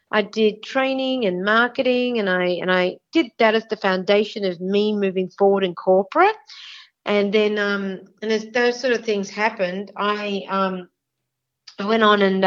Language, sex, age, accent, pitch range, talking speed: English, female, 40-59, Australian, 185-235 Hz, 175 wpm